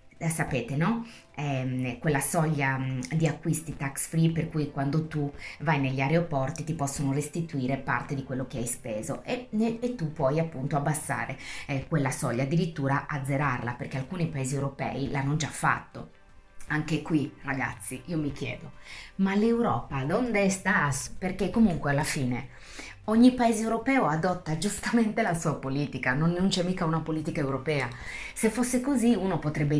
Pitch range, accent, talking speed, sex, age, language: 140-185 Hz, native, 155 wpm, female, 30-49, Italian